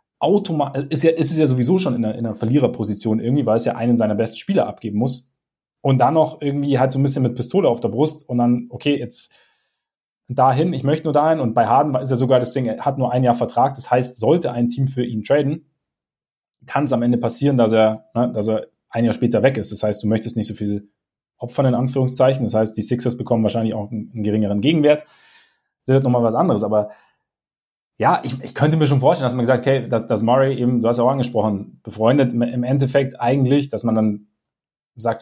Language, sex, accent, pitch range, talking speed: German, male, German, 110-135 Hz, 230 wpm